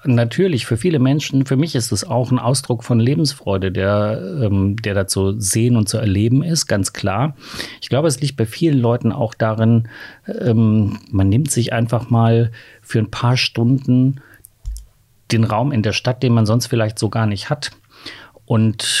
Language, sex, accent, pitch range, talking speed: German, male, German, 105-130 Hz, 175 wpm